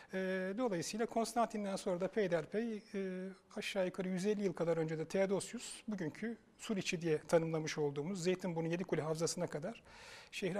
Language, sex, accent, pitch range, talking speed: Turkish, male, native, 155-195 Hz, 135 wpm